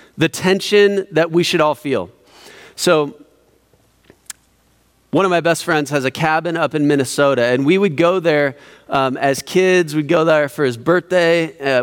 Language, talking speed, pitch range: English, 175 wpm, 165-260 Hz